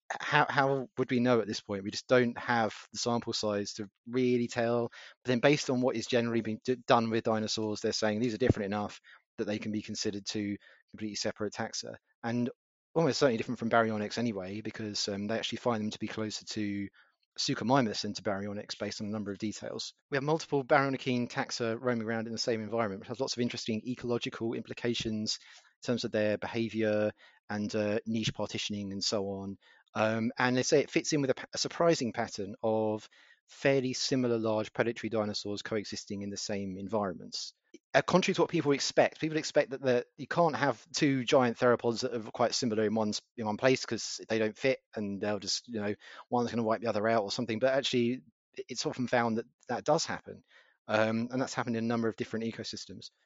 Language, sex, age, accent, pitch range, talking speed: English, male, 30-49, British, 105-125 Hz, 205 wpm